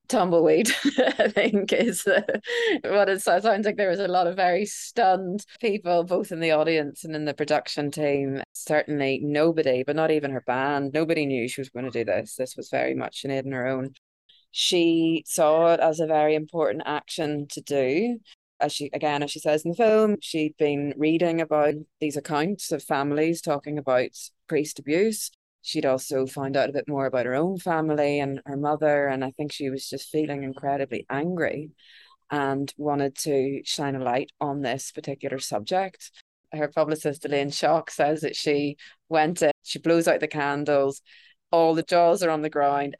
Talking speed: 185 wpm